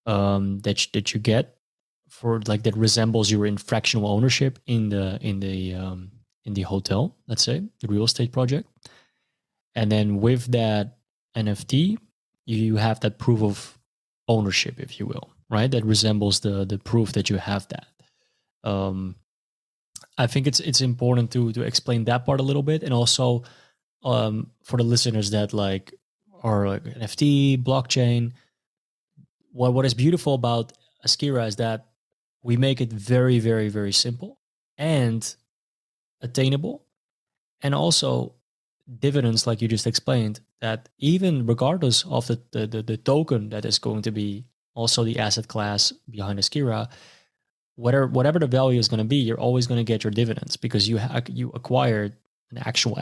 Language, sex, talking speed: English, male, 160 wpm